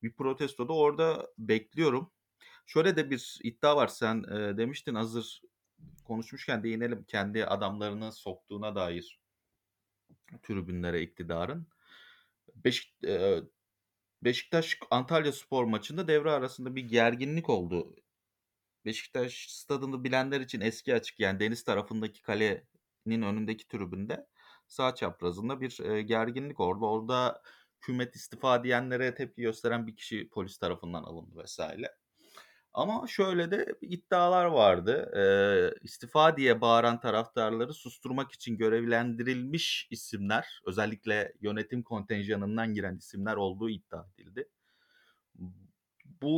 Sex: male